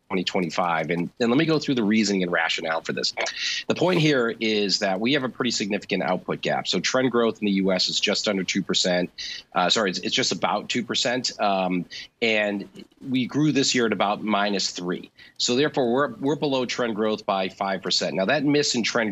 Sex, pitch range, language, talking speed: male, 95-120 Hz, English, 205 wpm